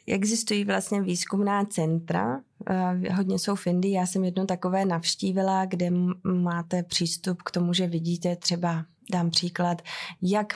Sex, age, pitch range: female, 20-39, 175-185 Hz